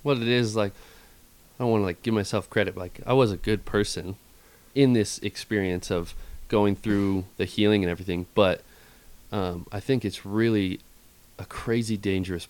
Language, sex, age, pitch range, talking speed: English, male, 20-39, 90-105 Hz, 180 wpm